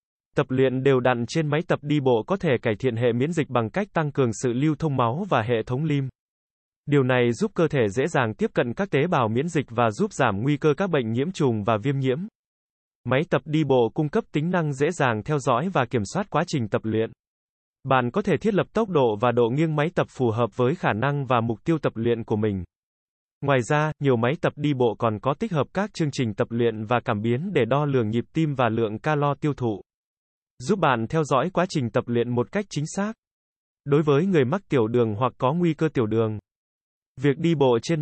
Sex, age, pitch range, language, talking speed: male, 20-39, 120-155 Hz, Vietnamese, 245 wpm